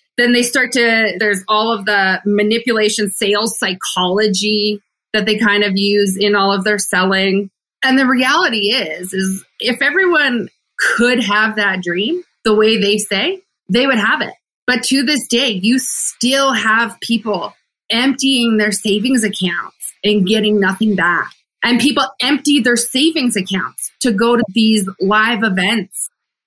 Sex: female